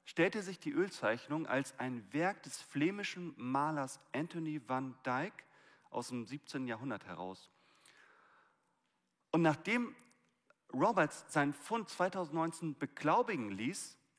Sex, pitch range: male, 120-180 Hz